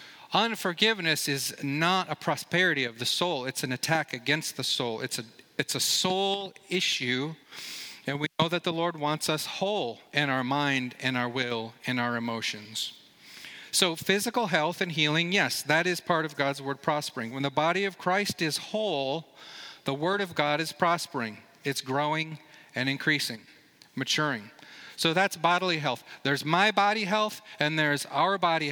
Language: English